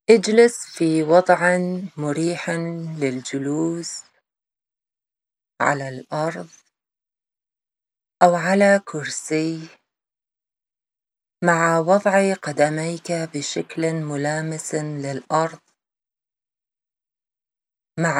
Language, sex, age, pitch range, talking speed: English, female, 30-49, 150-170 Hz, 55 wpm